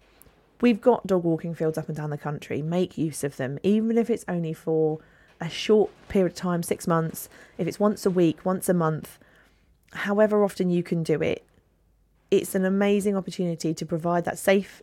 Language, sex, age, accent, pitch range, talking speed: English, female, 20-39, British, 160-200 Hz, 195 wpm